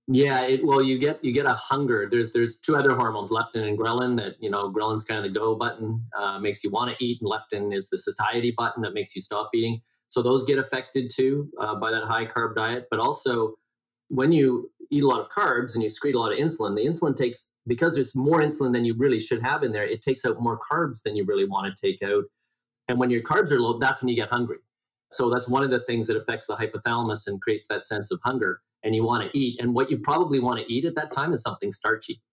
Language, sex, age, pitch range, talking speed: English, male, 40-59, 115-140 Hz, 260 wpm